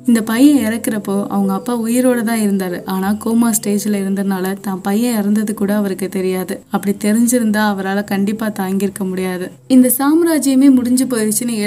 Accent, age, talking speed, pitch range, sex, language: native, 20-39, 140 wpm, 205-260 Hz, female, Tamil